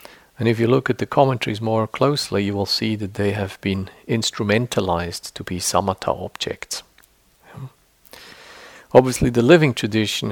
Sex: male